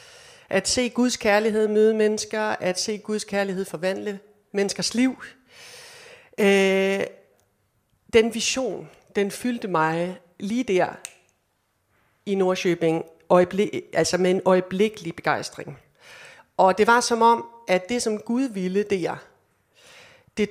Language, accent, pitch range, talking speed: Danish, native, 175-210 Hz, 115 wpm